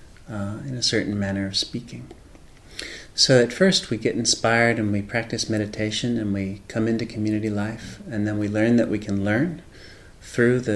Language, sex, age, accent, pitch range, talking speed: English, male, 40-59, American, 105-120 Hz, 185 wpm